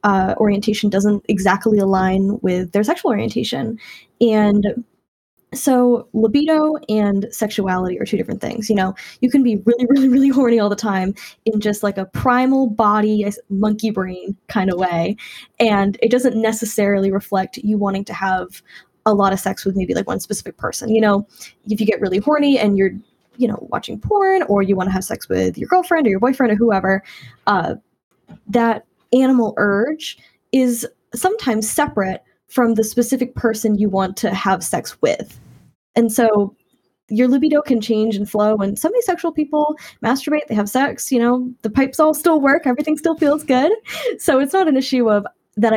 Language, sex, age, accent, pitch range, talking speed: English, female, 10-29, American, 205-250 Hz, 180 wpm